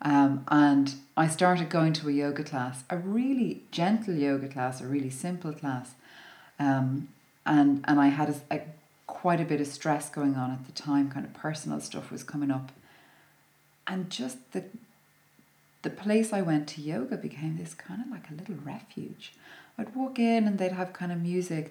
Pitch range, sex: 145-200 Hz, female